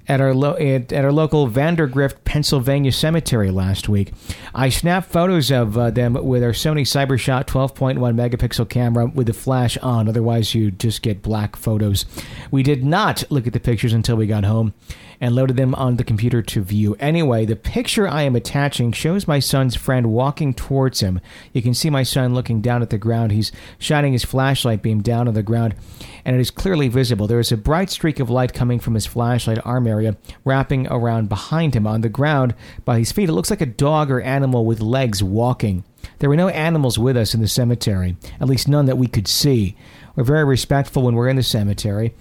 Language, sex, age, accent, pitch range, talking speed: English, male, 50-69, American, 115-140 Hz, 210 wpm